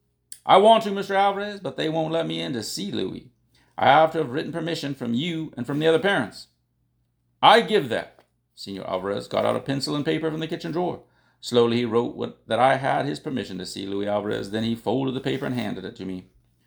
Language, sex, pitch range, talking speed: English, male, 105-160 Hz, 235 wpm